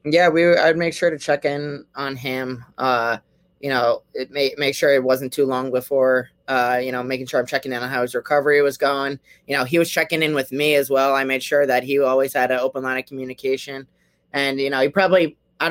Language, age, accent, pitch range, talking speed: English, 20-39, American, 130-150 Hz, 245 wpm